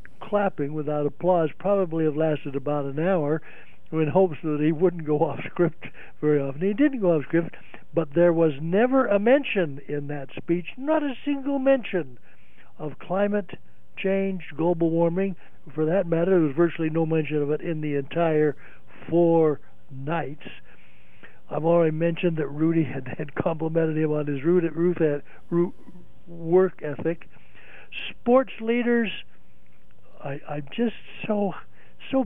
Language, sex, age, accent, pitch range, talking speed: English, male, 60-79, American, 145-180 Hz, 155 wpm